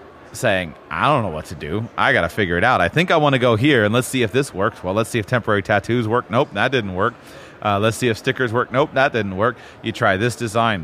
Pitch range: 95-120 Hz